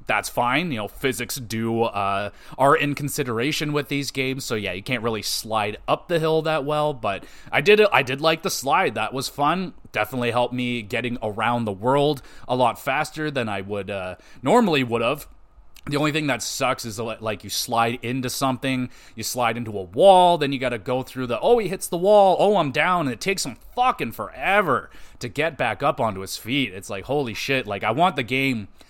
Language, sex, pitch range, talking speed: English, male, 115-150 Hz, 220 wpm